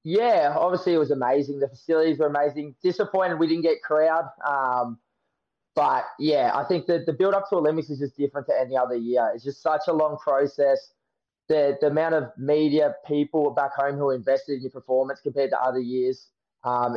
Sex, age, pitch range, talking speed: male, 20-39, 135-155 Hz, 200 wpm